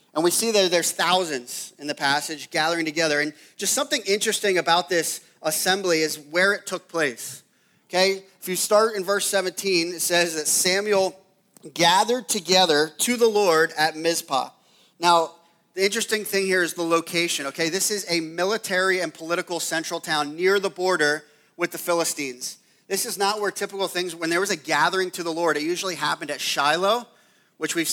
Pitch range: 160-195 Hz